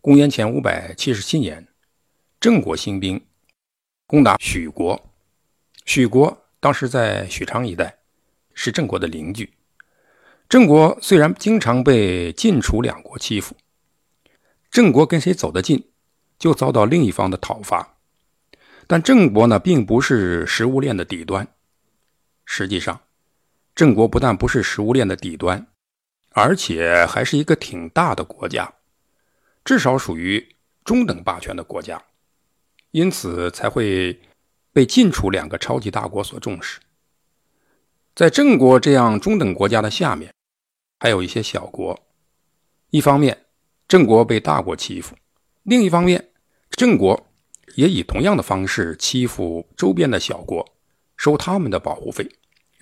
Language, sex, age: Chinese, male, 60-79